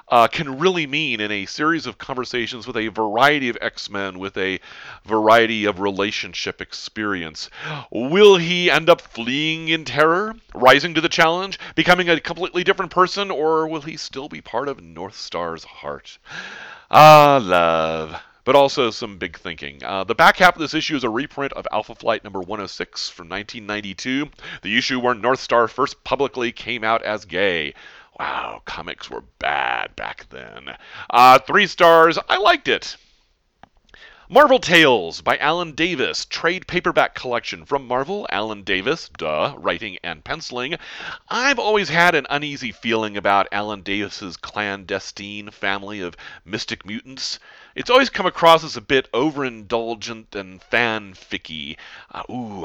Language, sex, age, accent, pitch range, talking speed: English, male, 40-59, American, 105-165 Hz, 155 wpm